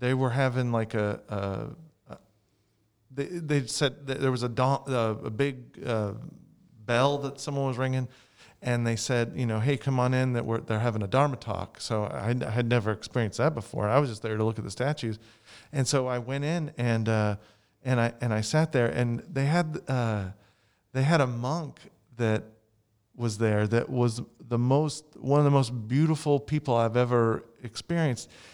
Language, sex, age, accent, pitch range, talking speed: English, male, 40-59, American, 110-145 Hz, 195 wpm